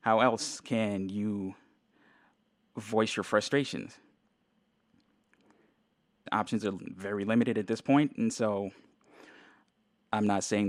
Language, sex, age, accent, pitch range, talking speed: English, male, 20-39, American, 100-140 Hz, 110 wpm